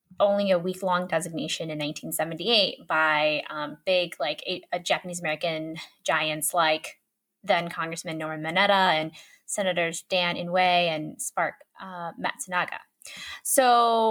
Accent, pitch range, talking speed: American, 170-210 Hz, 130 wpm